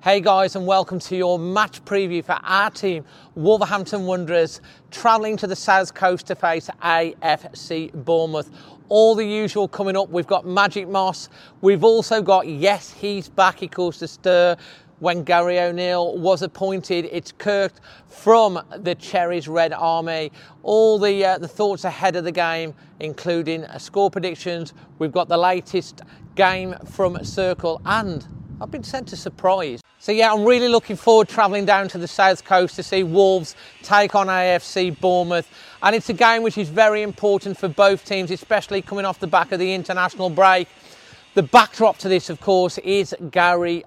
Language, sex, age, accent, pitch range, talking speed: English, male, 40-59, British, 170-195 Hz, 170 wpm